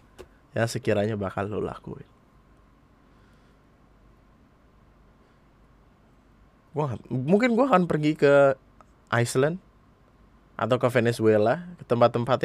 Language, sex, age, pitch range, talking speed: Indonesian, male, 20-39, 110-140 Hz, 80 wpm